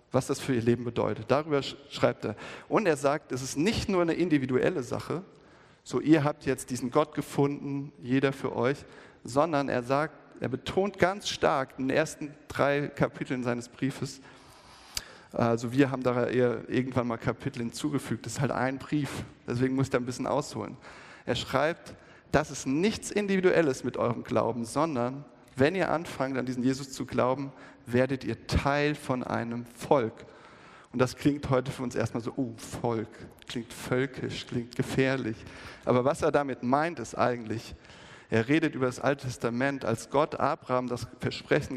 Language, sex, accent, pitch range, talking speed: German, male, German, 120-145 Hz, 170 wpm